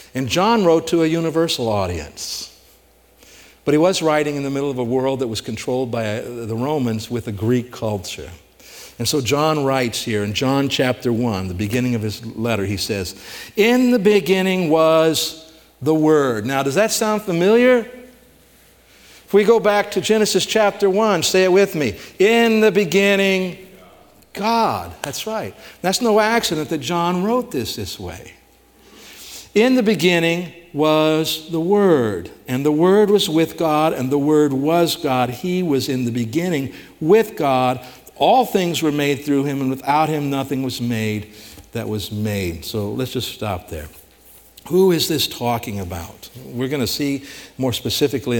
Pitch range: 120-185 Hz